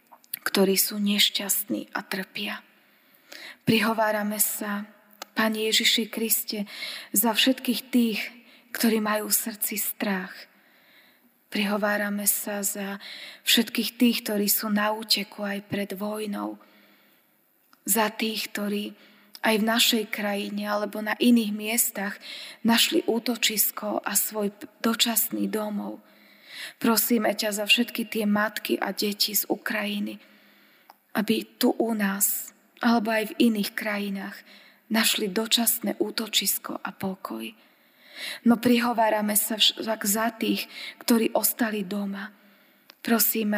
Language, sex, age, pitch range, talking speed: Slovak, female, 20-39, 205-230 Hz, 110 wpm